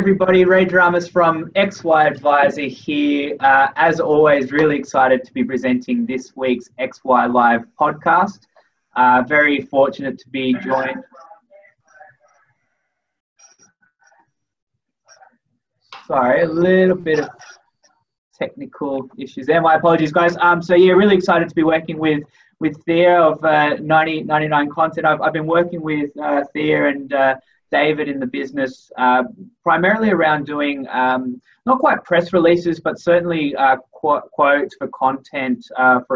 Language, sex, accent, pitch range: English, male, Australian, 125-175 Hz